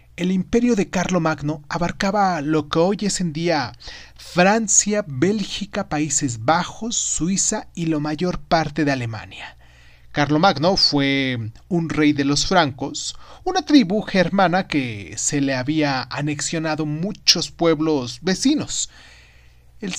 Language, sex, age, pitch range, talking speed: Spanish, male, 30-49, 140-185 Hz, 125 wpm